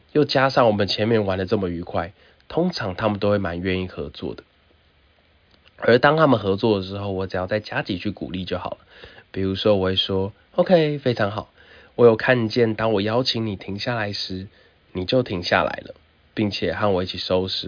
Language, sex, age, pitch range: Chinese, male, 20-39, 90-110 Hz